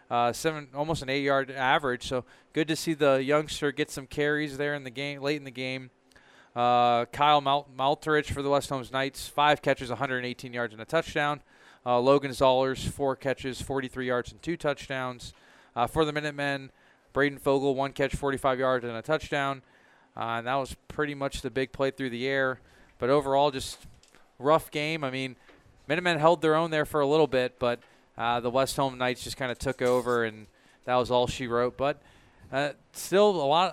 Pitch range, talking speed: 130-145 Hz, 200 wpm